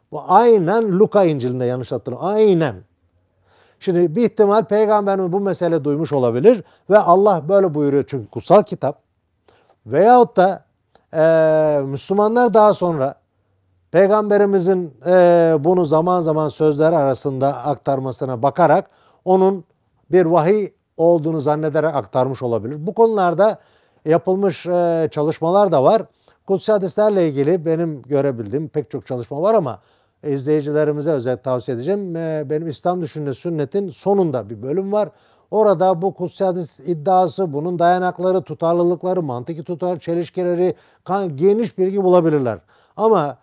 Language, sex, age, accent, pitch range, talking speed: Turkish, male, 50-69, native, 145-190 Hz, 115 wpm